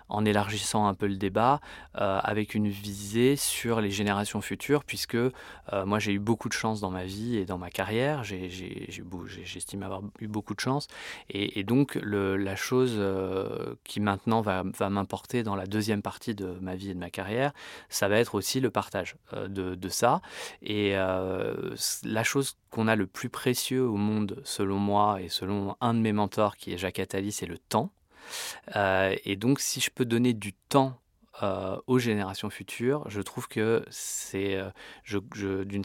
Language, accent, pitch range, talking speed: French, French, 95-115 Hz, 200 wpm